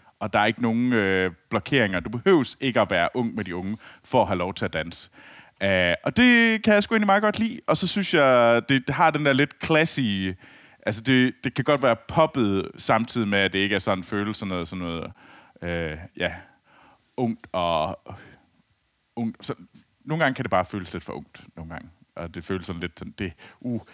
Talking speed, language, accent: 225 wpm, Danish, native